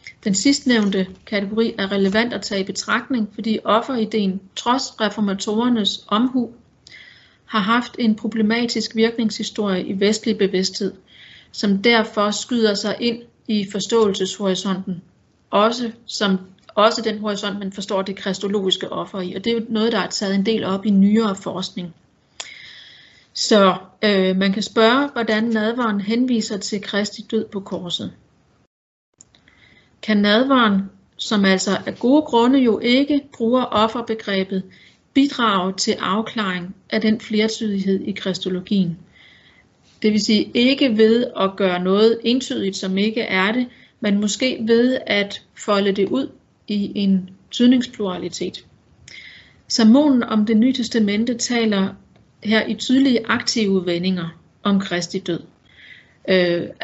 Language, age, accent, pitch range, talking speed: Danish, 40-59, native, 195-230 Hz, 130 wpm